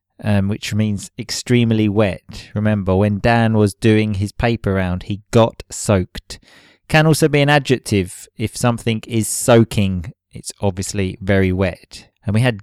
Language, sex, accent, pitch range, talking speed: English, male, British, 100-125 Hz, 150 wpm